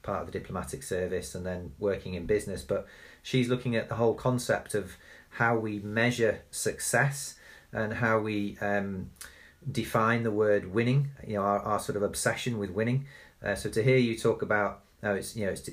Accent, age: British, 40-59